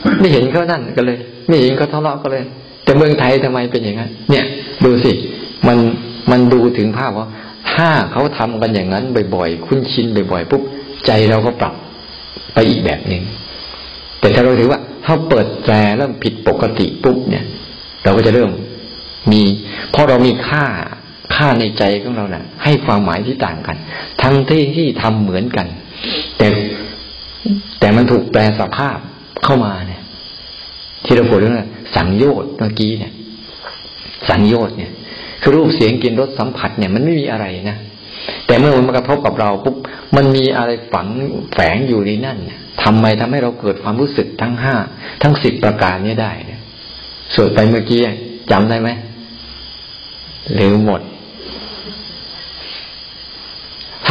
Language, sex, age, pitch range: Thai, male, 60-79, 105-135 Hz